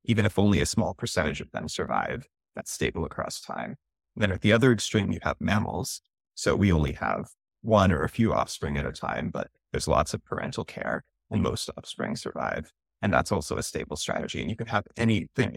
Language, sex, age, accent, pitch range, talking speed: English, male, 20-39, American, 90-115 Hz, 210 wpm